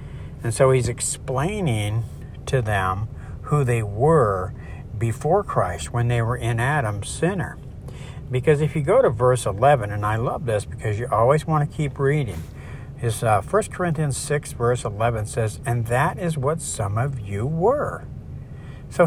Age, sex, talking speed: 60-79, male, 160 wpm